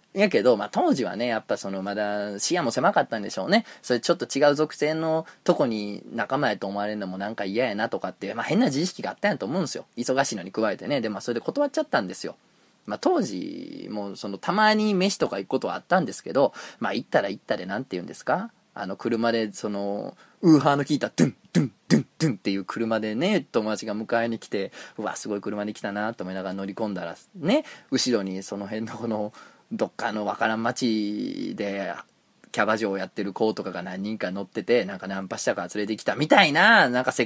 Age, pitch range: 20-39, 100-155 Hz